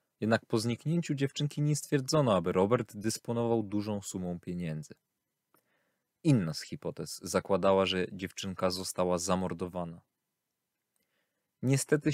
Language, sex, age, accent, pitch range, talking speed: Polish, male, 20-39, native, 95-125 Hz, 105 wpm